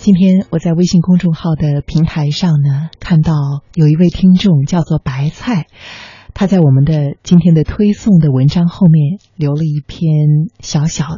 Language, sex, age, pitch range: Chinese, female, 30-49, 140-175 Hz